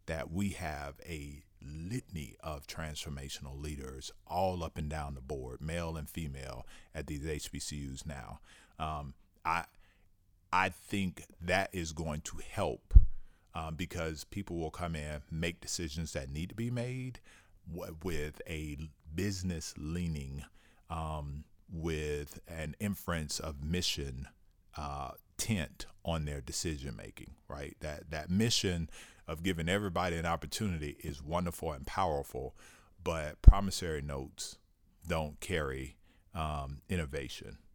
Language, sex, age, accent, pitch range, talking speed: English, male, 40-59, American, 75-90 Hz, 125 wpm